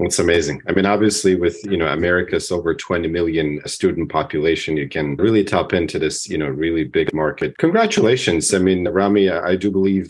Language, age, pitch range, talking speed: English, 40-59, 85-105 Hz, 190 wpm